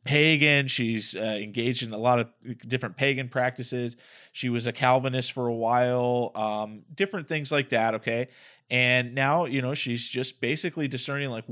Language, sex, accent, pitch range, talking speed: English, male, American, 120-150 Hz, 170 wpm